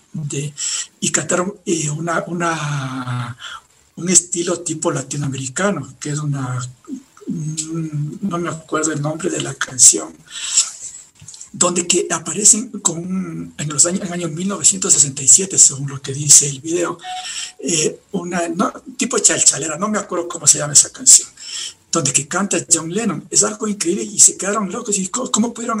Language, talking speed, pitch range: Spanish, 150 wpm, 150-195 Hz